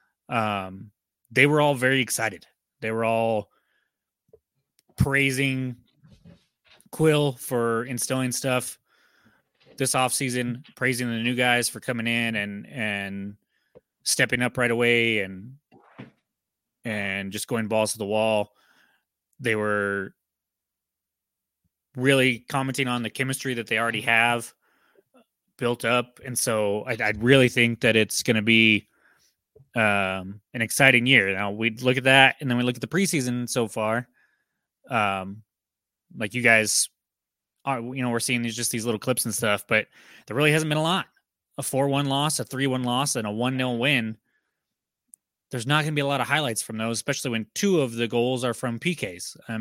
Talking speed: 165 wpm